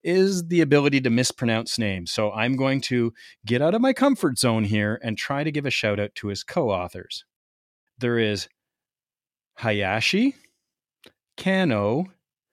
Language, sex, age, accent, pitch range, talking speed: English, male, 30-49, American, 110-155 Hz, 150 wpm